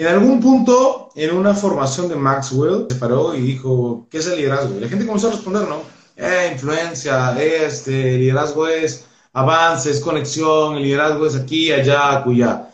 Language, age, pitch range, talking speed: Spanish, 30-49, 135-230 Hz, 170 wpm